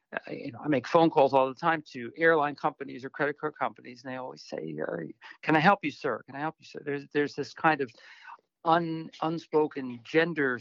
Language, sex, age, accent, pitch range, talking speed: English, male, 60-79, American, 135-165 Hz, 205 wpm